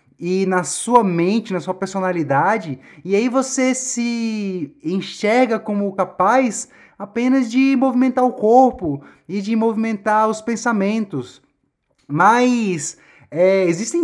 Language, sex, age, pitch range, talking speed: Portuguese, male, 20-39, 175-230 Hz, 110 wpm